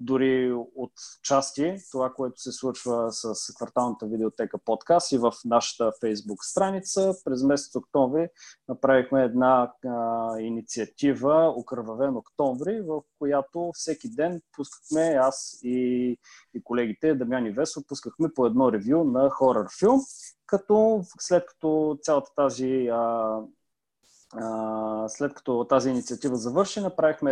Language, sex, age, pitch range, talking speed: Bulgarian, male, 20-39, 125-165 Hz, 125 wpm